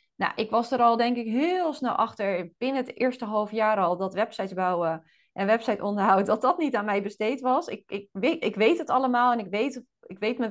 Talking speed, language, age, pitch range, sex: 225 wpm, Dutch, 30-49, 185-220 Hz, female